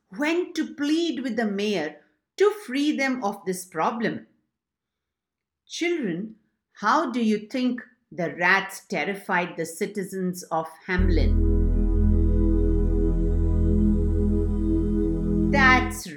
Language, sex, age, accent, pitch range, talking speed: English, female, 50-69, Indian, 180-290 Hz, 95 wpm